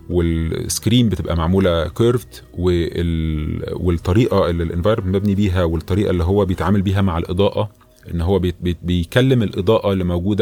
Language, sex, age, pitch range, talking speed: English, male, 30-49, 85-105 Hz, 125 wpm